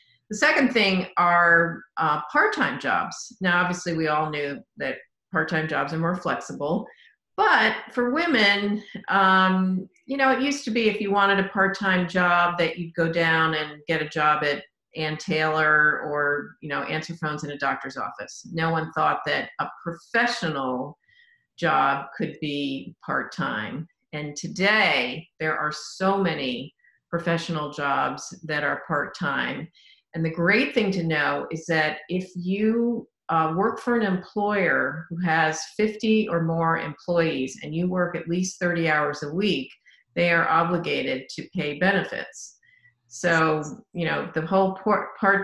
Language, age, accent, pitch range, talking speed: English, 50-69, American, 155-195 Hz, 160 wpm